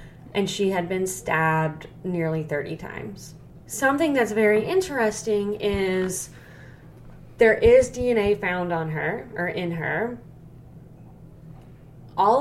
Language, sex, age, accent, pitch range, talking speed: English, female, 20-39, American, 160-205 Hz, 110 wpm